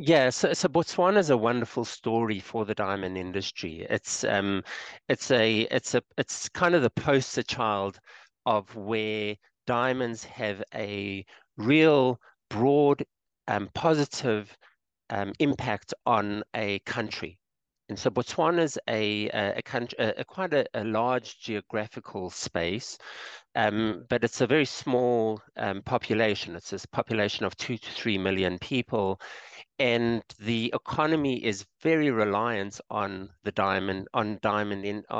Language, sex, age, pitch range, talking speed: English, male, 50-69, 100-125 Hz, 140 wpm